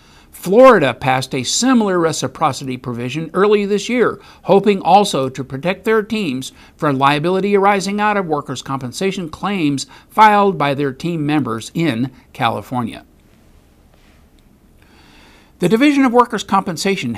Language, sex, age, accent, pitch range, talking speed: English, male, 60-79, American, 145-205 Hz, 120 wpm